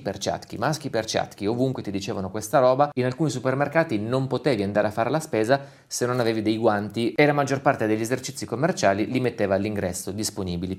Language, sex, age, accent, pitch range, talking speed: Italian, male, 30-49, native, 95-125 Hz, 200 wpm